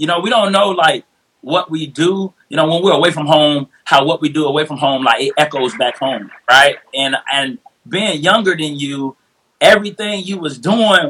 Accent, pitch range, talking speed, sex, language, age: American, 155-205 Hz, 210 wpm, male, English, 30-49